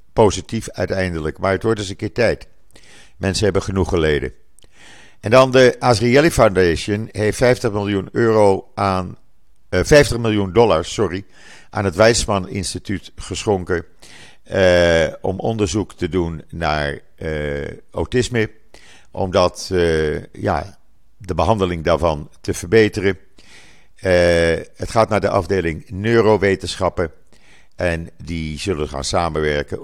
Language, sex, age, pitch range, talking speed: Dutch, male, 50-69, 85-115 Hz, 125 wpm